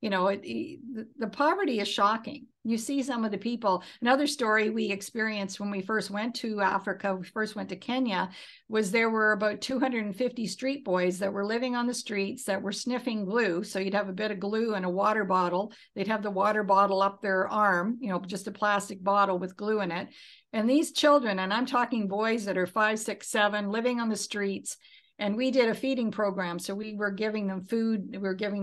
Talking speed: 220 wpm